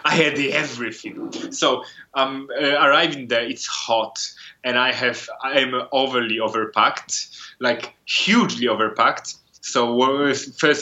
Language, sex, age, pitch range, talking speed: English, male, 20-39, 110-135 Hz, 105 wpm